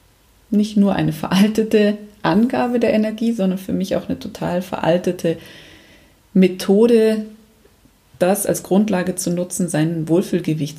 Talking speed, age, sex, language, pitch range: 120 wpm, 30-49, female, German, 180-215 Hz